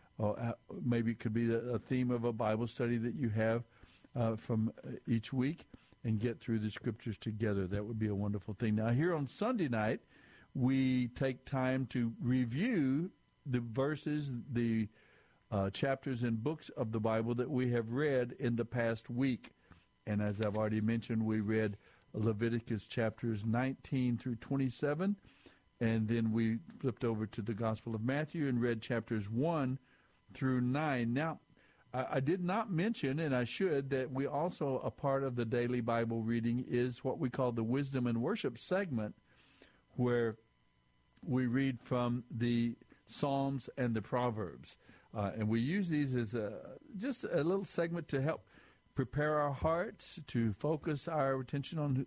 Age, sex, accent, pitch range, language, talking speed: 60-79, male, American, 115-135 Hz, English, 165 wpm